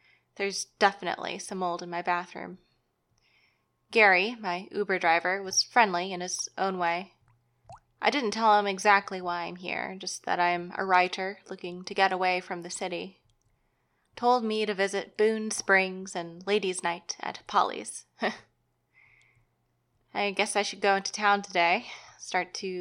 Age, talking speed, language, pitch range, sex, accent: 20-39, 155 wpm, English, 175-210 Hz, female, American